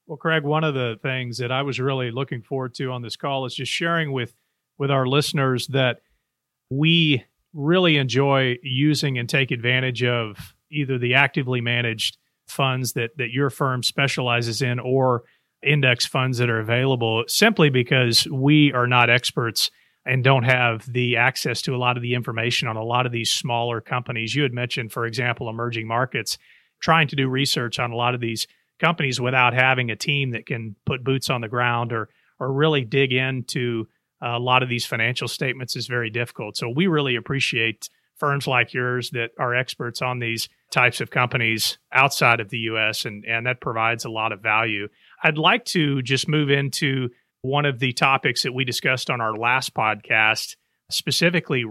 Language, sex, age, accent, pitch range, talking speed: English, male, 40-59, American, 120-140 Hz, 185 wpm